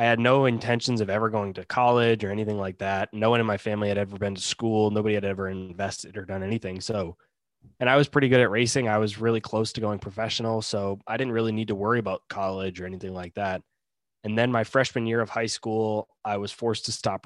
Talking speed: 245 wpm